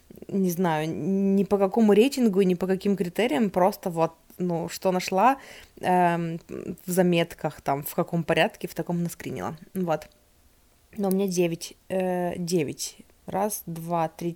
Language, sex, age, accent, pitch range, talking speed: Russian, female, 20-39, native, 175-215 Hz, 145 wpm